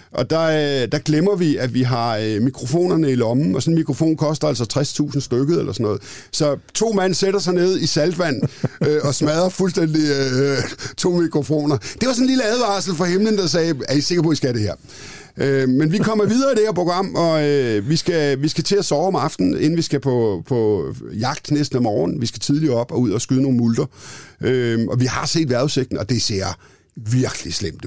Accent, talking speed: native, 230 wpm